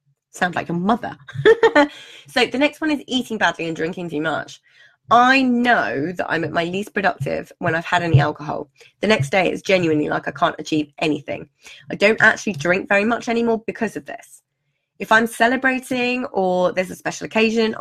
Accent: British